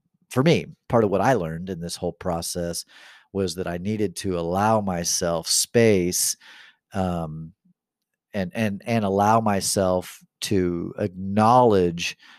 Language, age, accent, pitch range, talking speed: English, 40-59, American, 90-125 Hz, 130 wpm